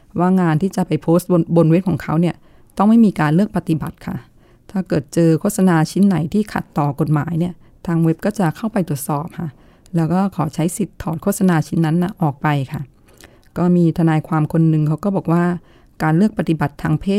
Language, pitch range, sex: Thai, 155-185 Hz, female